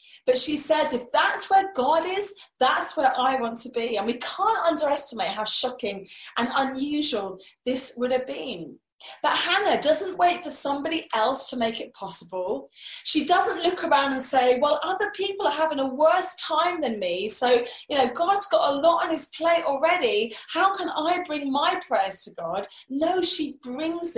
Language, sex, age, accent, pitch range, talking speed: English, female, 30-49, British, 250-340 Hz, 185 wpm